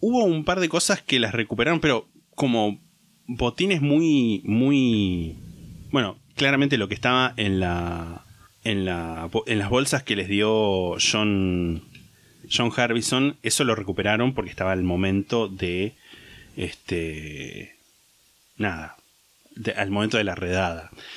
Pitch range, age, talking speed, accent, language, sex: 95-125 Hz, 20-39, 135 wpm, Argentinian, Spanish, male